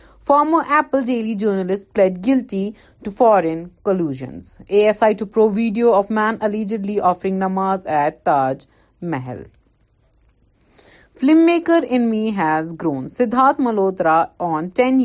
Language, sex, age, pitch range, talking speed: Urdu, female, 30-49, 160-240 Hz, 120 wpm